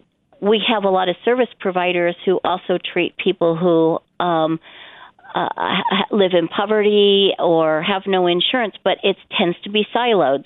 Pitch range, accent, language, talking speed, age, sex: 160-190 Hz, American, English, 155 wpm, 50-69, female